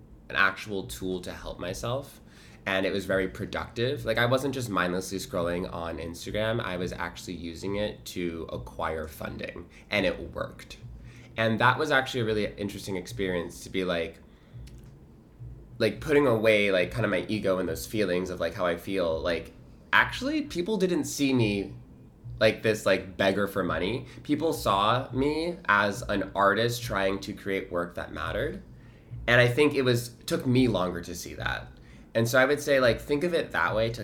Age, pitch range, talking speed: 20-39, 95-125 Hz, 185 wpm